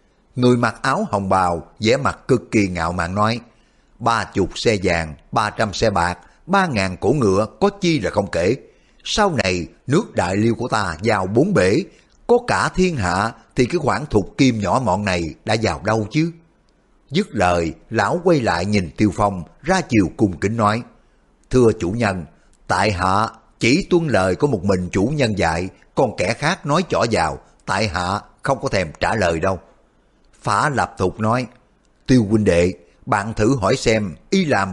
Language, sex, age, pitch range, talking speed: Vietnamese, male, 60-79, 95-125 Hz, 190 wpm